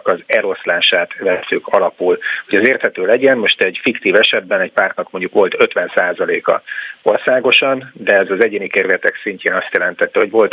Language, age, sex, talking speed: Hungarian, 40-59, male, 160 wpm